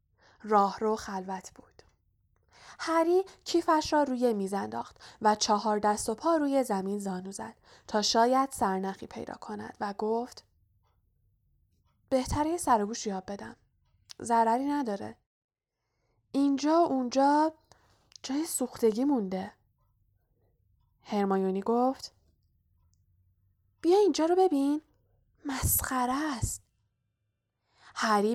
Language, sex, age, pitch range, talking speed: Persian, female, 10-29, 190-250 Hz, 100 wpm